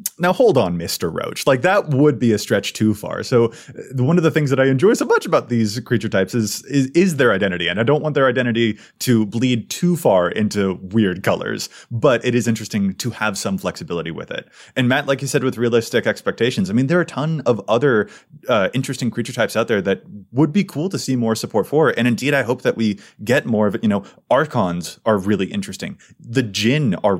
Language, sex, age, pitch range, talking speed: English, male, 20-39, 110-145 Hz, 235 wpm